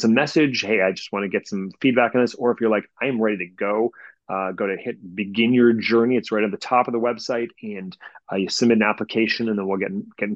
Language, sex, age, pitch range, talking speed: English, male, 30-49, 100-120 Hz, 270 wpm